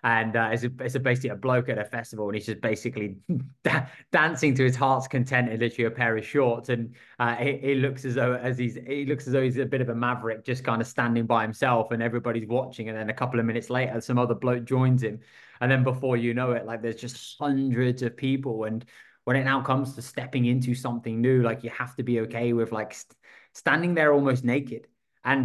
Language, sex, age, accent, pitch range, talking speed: English, male, 20-39, British, 120-135 Hz, 245 wpm